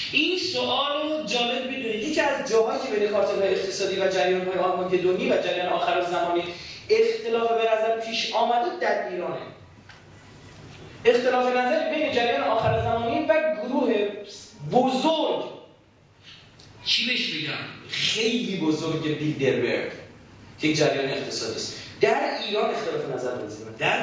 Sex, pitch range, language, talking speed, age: male, 175-255 Hz, Persian, 120 wpm, 30-49